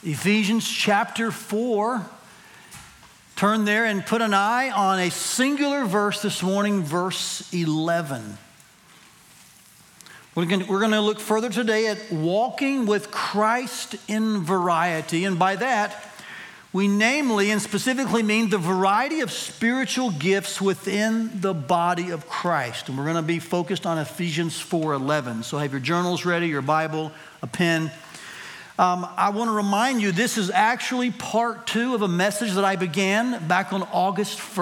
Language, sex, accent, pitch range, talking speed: English, male, American, 180-220 Hz, 155 wpm